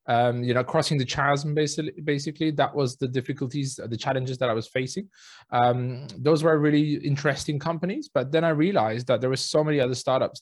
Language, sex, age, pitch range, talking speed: English, male, 20-39, 125-150 Hz, 200 wpm